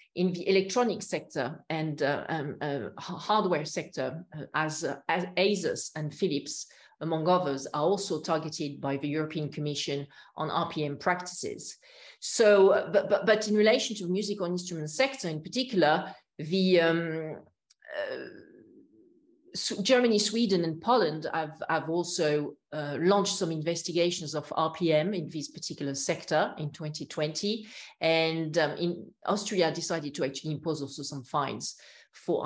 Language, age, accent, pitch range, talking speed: English, 40-59, French, 150-195 Hz, 145 wpm